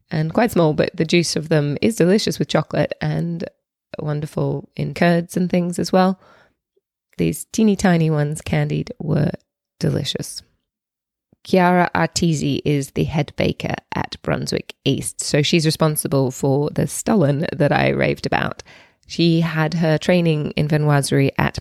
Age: 20-39